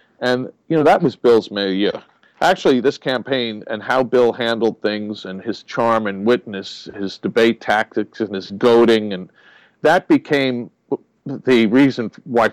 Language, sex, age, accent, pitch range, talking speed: English, male, 50-69, American, 105-135 Hz, 160 wpm